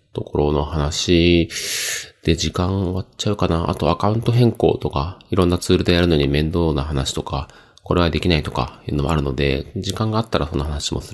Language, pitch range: Japanese, 75-95 Hz